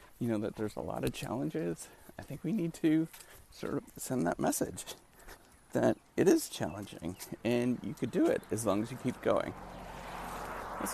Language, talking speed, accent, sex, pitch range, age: English, 185 wpm, American, male, 105-125 Hz, 40-59